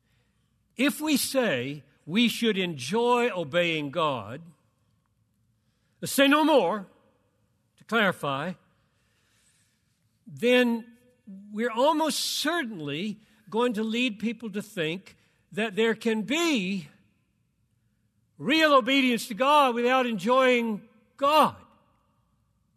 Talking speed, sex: 90 wpm, male